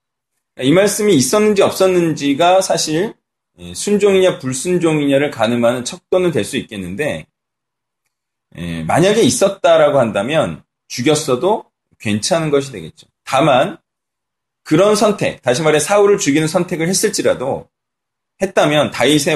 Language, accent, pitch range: Korean, native, 125-180 Hz